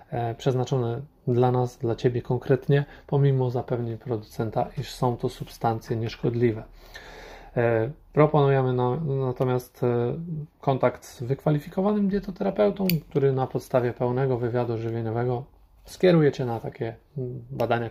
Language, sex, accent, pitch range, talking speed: Polish, male, native, 120-135 Hz, 105 wpm